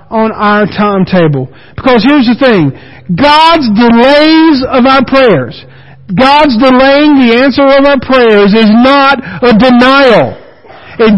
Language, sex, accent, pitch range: English, male, American, 205-270 Hz